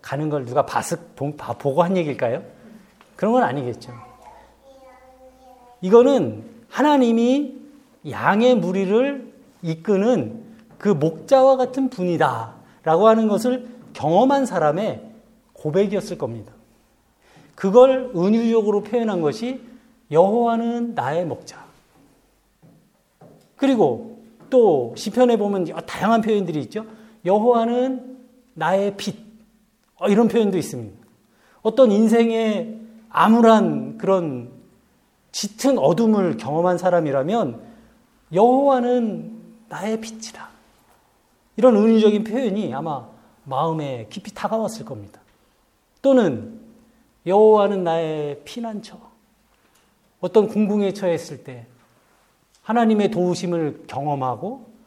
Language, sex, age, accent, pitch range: Korean, male, 40-59, native, 170-240 Hz